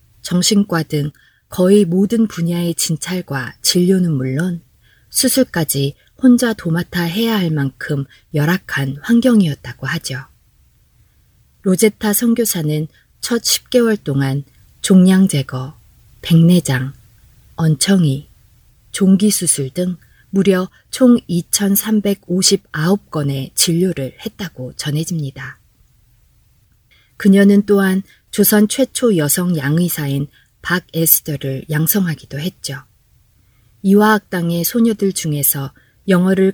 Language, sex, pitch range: Korean, female, 145-195 Hz